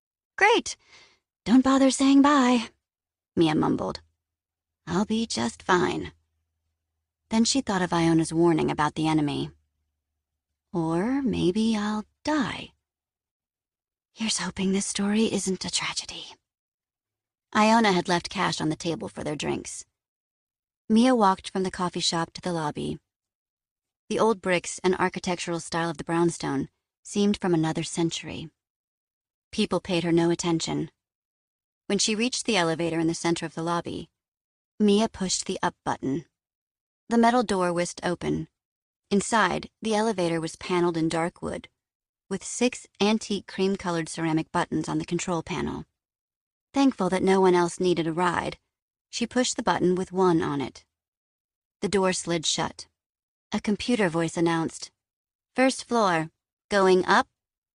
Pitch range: 165-210 Hz